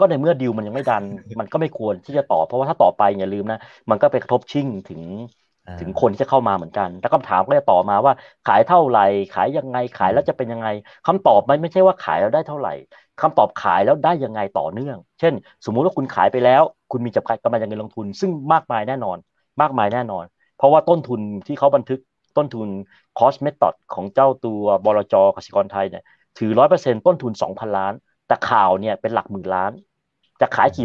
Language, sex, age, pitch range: Thai, male, 30-49, 105-145 Hz